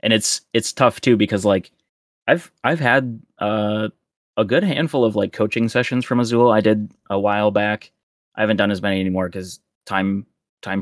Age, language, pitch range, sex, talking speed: 20-39, English, 95-115 Hz, male, 190 wpm